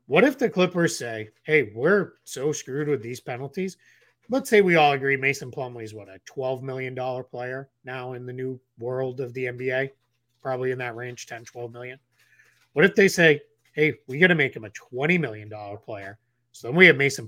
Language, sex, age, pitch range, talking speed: English, male, 30-49, 120-150 Hz, 205 wpm